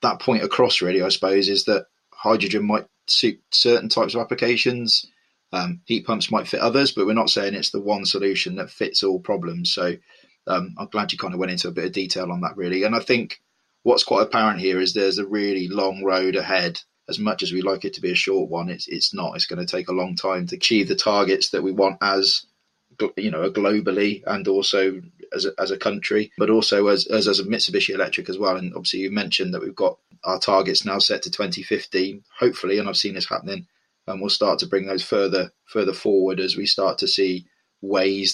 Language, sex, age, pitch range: English, male, 20-39, 95-110 Hz